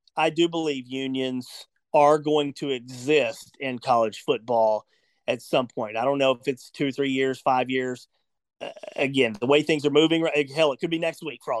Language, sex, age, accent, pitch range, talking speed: English, male, 40-59, American, 135-170 Hz, 200 wpm